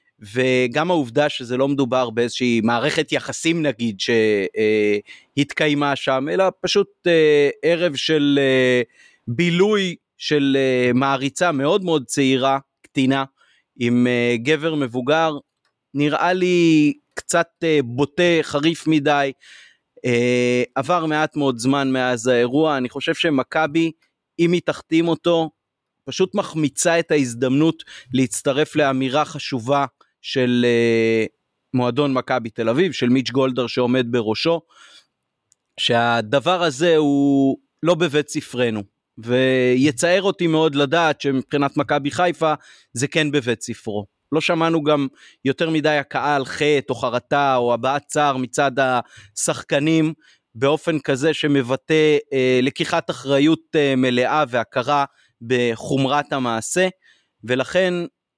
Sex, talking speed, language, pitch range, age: male, 105 wpm, Hebrew, 125-160 Hz, 30-49